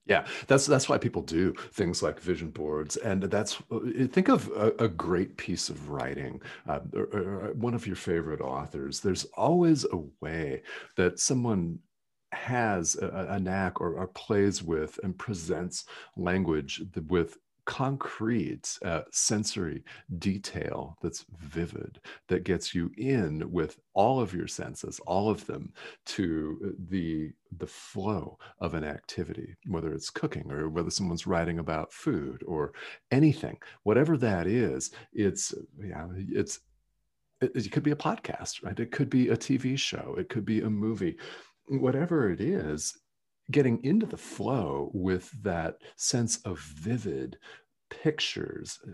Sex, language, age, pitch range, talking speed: male, English, 40-59, 85-130 Hz, 145 wpm